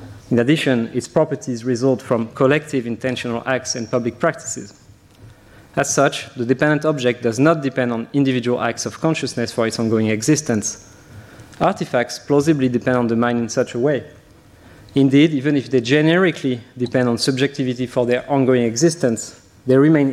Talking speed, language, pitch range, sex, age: 160 wpm, French, 120-140 Hz, male, 30-49